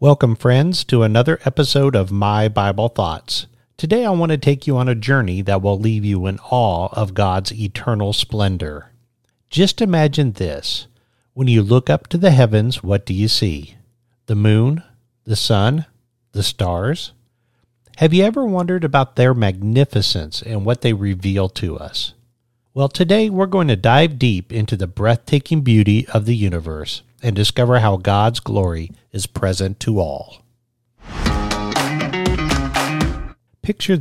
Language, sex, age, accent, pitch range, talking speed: English, male, 50-69, American, 100-135 Hz, 150 wpm